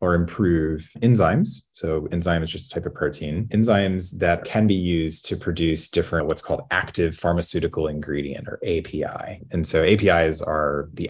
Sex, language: male, English